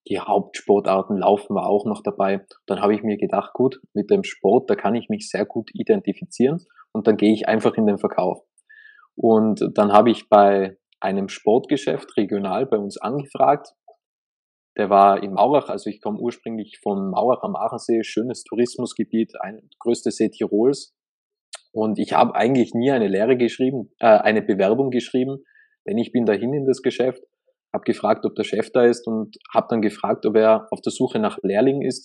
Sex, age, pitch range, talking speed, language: male, 20-39, 110-145 Hz, 185 wpm, German